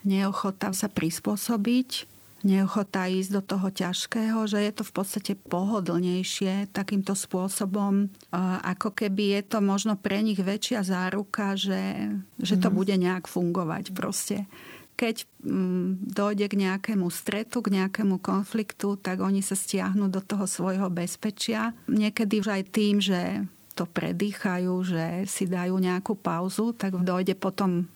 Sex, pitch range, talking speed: female, 185-210 Hz, 135 wpm